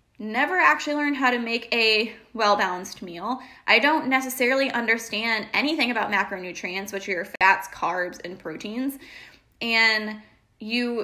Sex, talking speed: female, 130 wpm